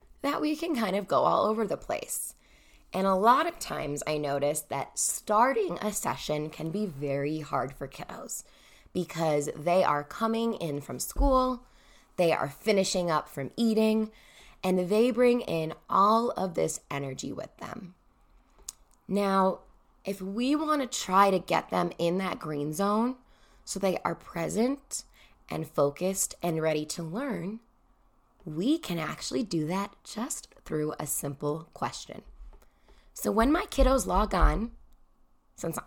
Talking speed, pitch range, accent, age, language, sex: 150 wpm, 155-230 Hz, American, 10-29, English, female